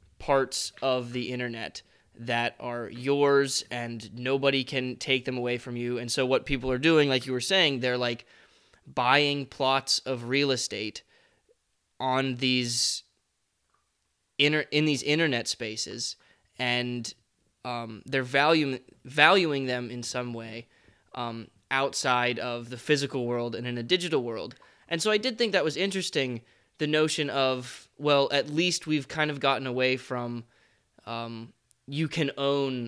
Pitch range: 120-140 Hz